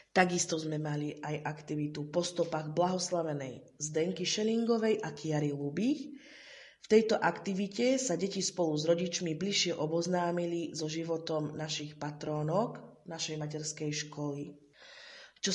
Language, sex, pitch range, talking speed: Slovak, female, 150-185 Hz, 120 wpm